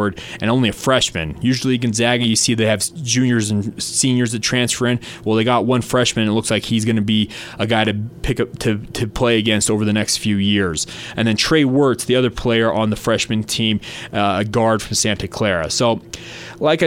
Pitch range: 115-135 Hz